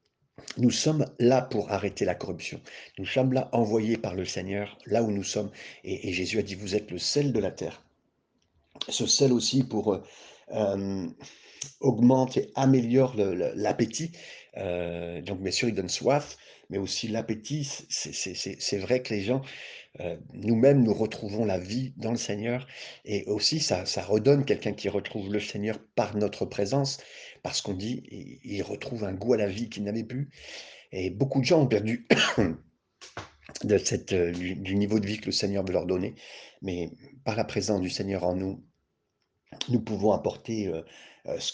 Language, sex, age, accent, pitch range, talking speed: French, male, 50-69, French, 100-125 Hz, 180 wpm